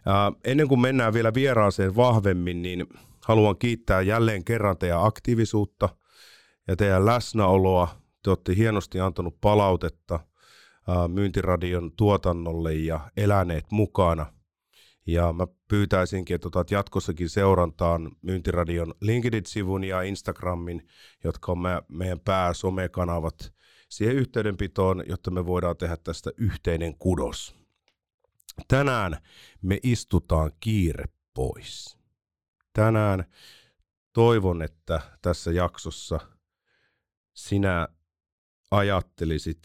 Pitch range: 85-105 Hz